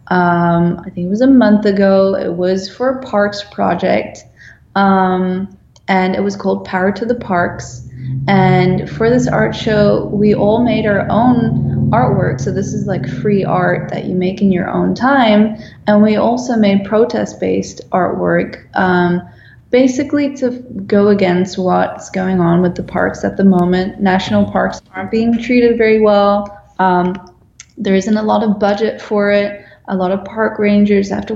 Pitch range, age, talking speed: 185-220 Hz, 20-39, 170 wpm